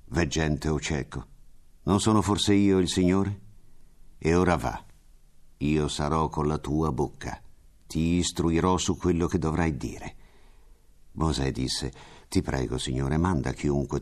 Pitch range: 75-100 Hz